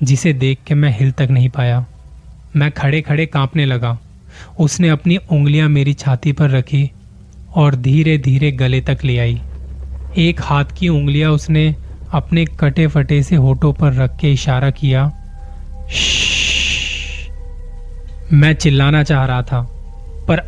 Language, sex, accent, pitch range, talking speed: Hindi, male, native, 120-150 Hz, 140 wpm